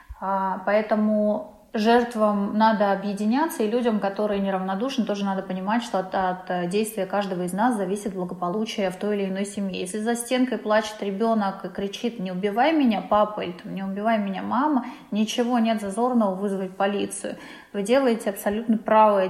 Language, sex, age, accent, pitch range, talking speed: Russian, female, 20-39, native, 195-225 Hz, 155 wpm